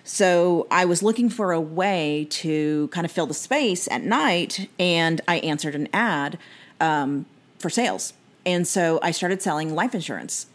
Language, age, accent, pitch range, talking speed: English, 40-59, American, 155-185 Hz, 170 wpm